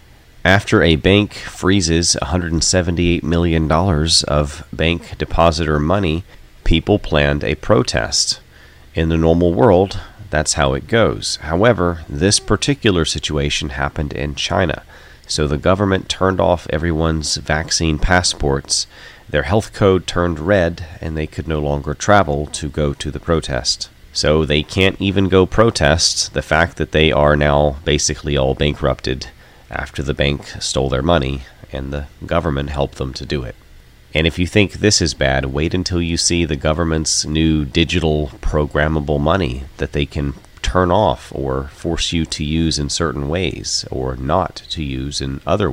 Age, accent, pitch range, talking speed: 30-49, American, 70-90 Hz, 155 wpm